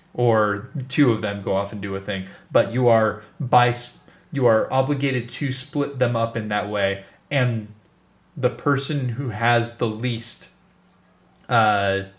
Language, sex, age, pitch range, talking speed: English, male, 20-39, 105-130 Hz, 160 wpm